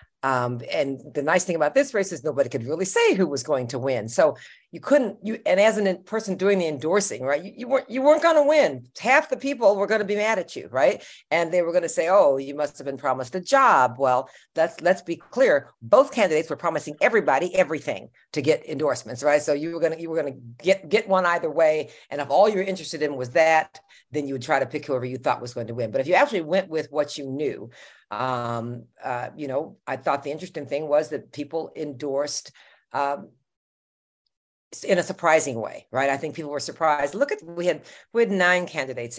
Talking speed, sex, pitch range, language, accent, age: 240 wpm, female, 130-185 Hz, English, American, 50-69